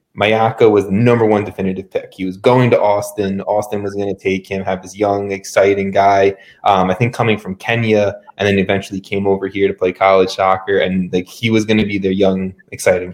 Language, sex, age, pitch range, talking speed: English, male, 20-39, 100-120 Hz, 225 wpm